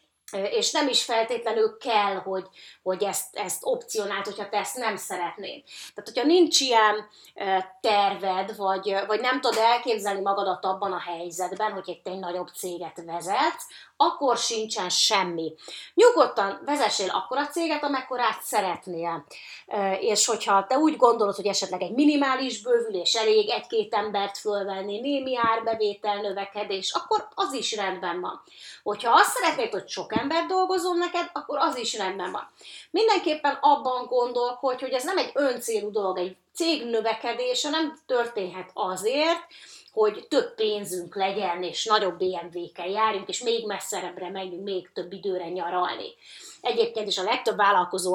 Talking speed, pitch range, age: 145 wpm, 185-245 Hz, 30-49